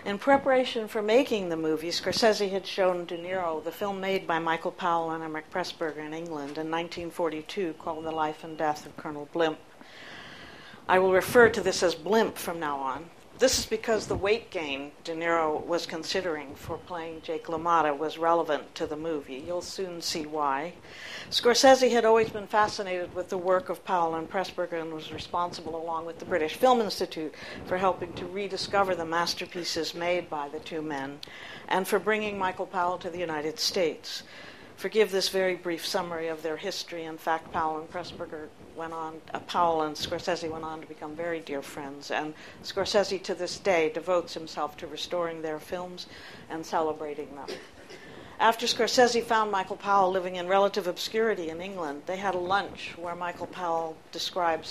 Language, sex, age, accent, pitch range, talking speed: English, female, 60-79, American, 160-185 Hz, 180 wpm